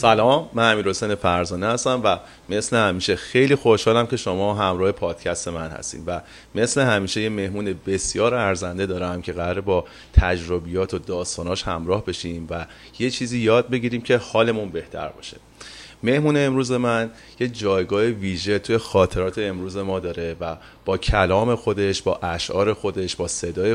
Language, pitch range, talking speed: Persian, 90-115 Hz, 155 wpm